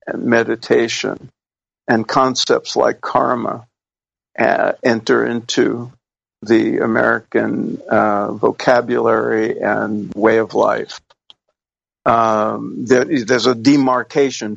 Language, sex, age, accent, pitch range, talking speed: English, male, 50-69, American, 105-135 Hz, 80 wpm